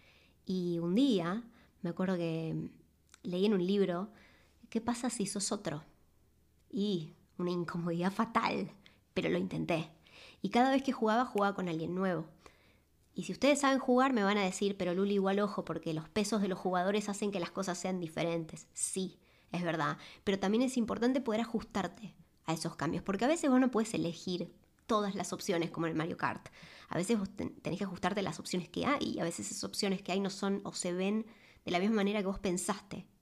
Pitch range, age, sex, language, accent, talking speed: 175-210 Hz, 20-39, male, Spanish, Argentinian, 200 wpm